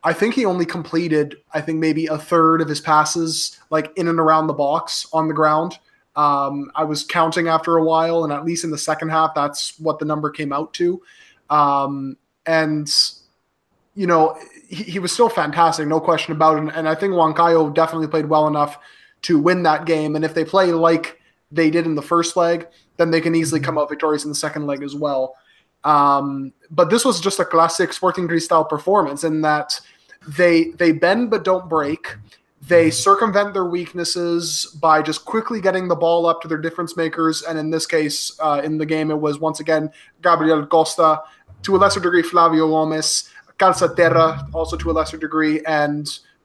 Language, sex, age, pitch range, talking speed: English, male, 20-39, 155-170 Hz, 200 wpm